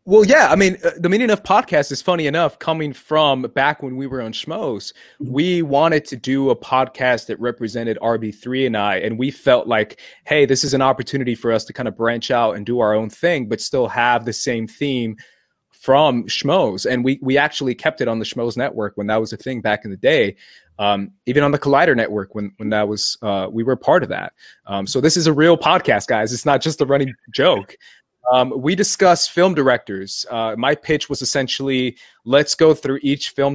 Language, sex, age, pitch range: English, male, 20-39, 115-140 Hz